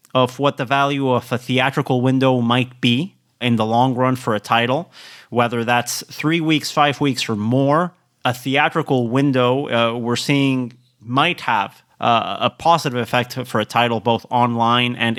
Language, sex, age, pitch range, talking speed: English, male, 30-49, 120-145 Hz, 170 wpm